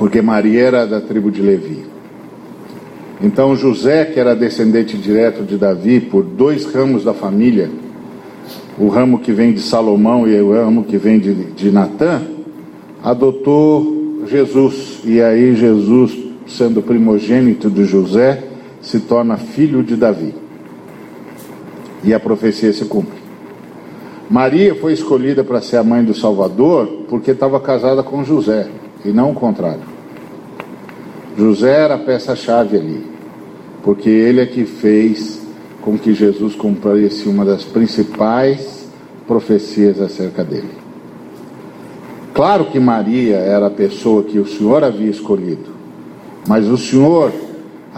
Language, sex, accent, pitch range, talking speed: Portuguese, male, Brazilian, 105-130 Hz, 135 wpm